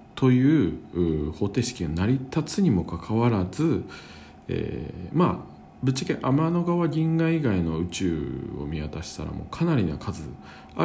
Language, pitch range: Japanese, 80-135 Hz